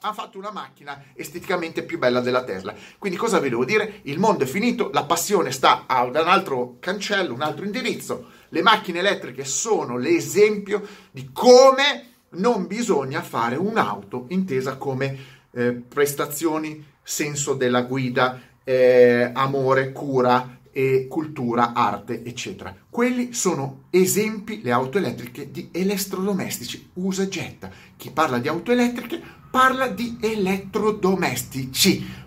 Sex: male